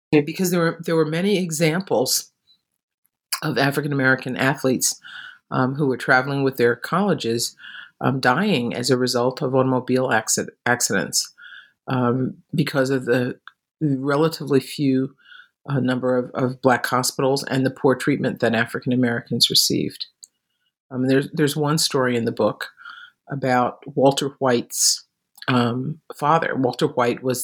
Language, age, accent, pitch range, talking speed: English, 50-69, American, 125-145 Hz, 140 wpm